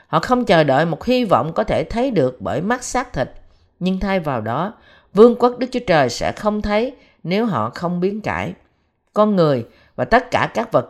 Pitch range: 155-215 Hz